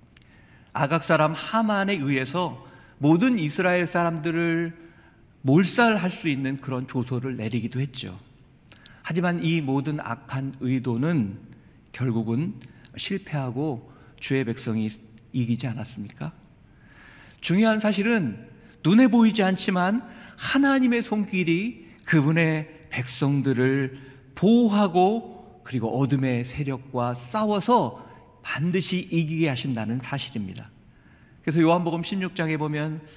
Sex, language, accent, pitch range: male, Korean, native, 125-175 Hz